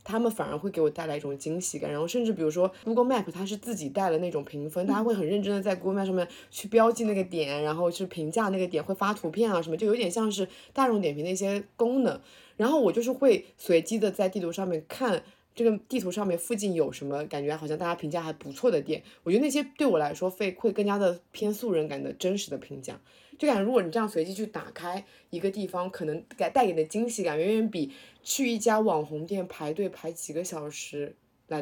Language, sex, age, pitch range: Chinese, female, 20-39, 165-225 Hz